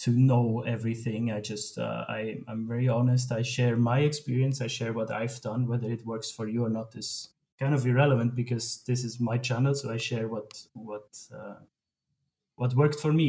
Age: 30-49